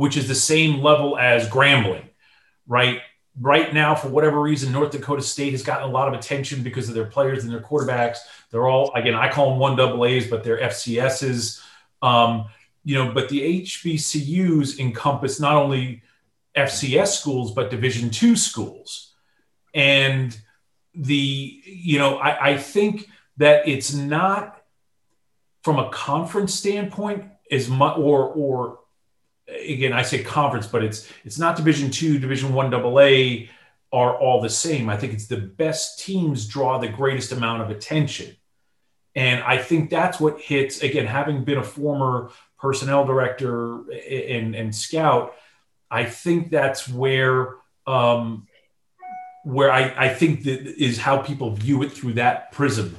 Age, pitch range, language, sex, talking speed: 40-59, 120-150 Hz, English, male, 155 wpm